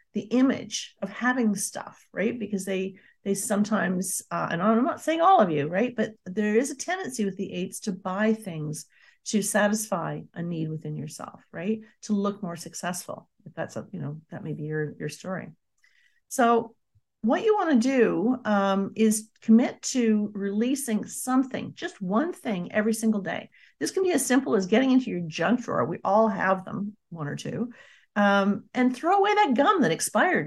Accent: American